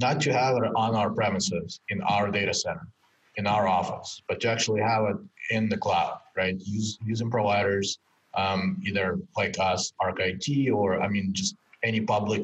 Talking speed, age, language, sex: 180 wpm, 30-49, English, male